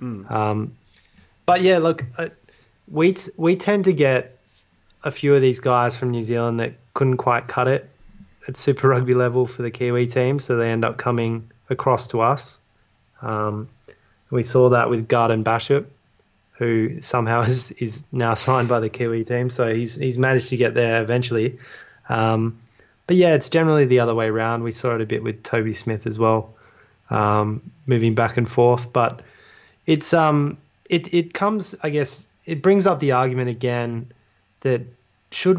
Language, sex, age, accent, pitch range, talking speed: English, male, 20-39, Australian, 115-135 Hz, 175 wpm